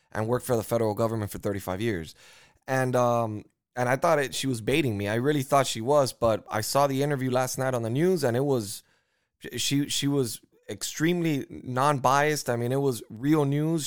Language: English